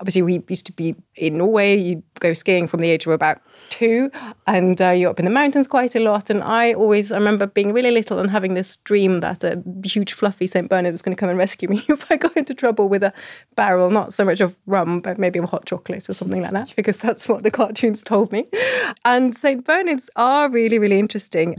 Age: 30-49